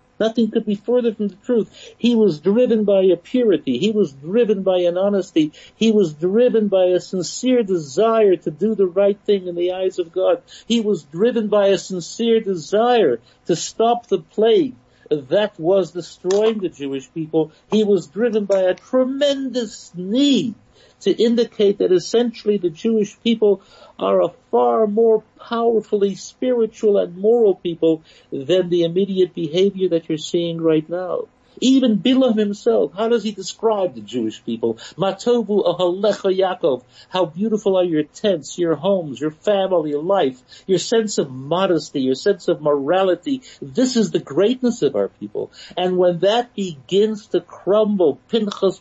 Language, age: English, 60-79